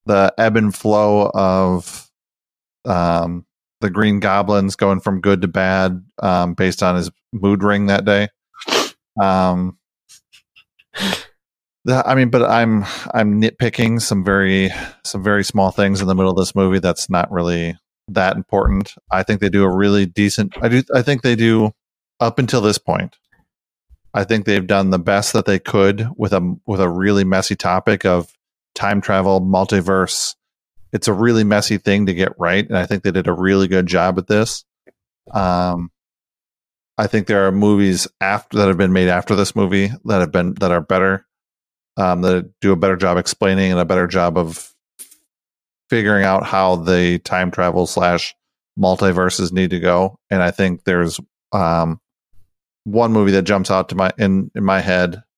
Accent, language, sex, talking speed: American, English, male, 175 wpm